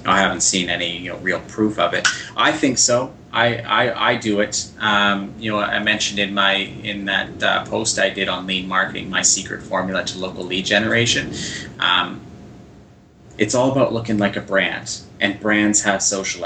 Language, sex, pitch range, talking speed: English, male, 100-110 Hz, 195 wpm